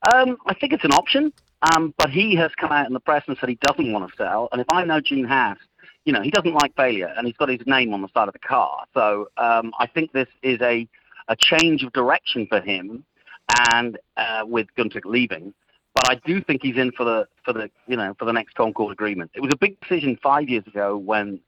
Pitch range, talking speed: 110-145 Hz, 250 wpm